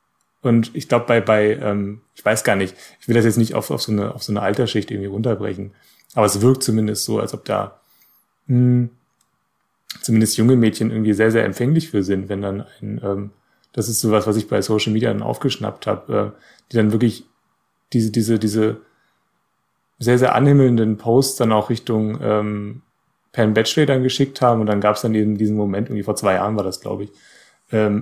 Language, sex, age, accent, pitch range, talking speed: German, male, 30-49, German, 105-115 Hz, 205 wpm